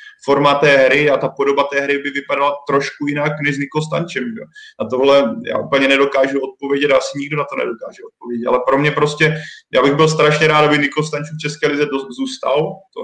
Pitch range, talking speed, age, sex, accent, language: 130-150 Hz, 200 wpm, 20-39, male, native, Czech